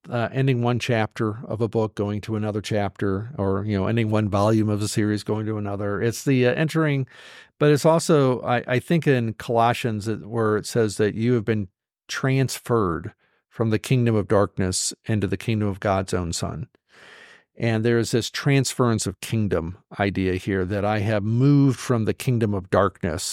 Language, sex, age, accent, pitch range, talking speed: English, male, 50-69, American, 100-120 Hz, 190 wpm